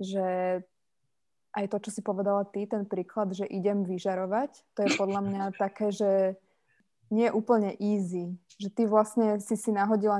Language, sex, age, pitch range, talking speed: Slovak, female, 20-39, 190-215 Hz, 165 wpm